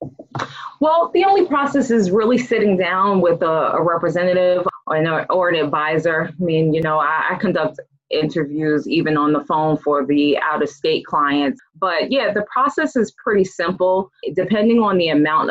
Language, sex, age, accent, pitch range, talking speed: English, female, 20-39, American, 145-185 Hz, 165 wpm